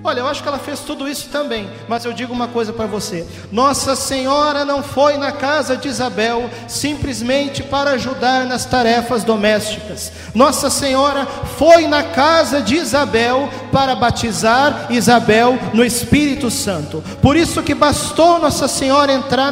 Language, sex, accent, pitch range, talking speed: Portuguese, male, Brazilian, 250-300 Hz, 155 wpm